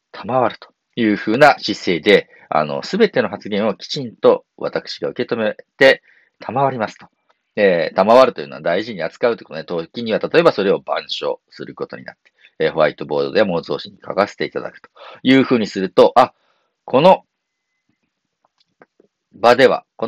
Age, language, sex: 40-59, Japanese, male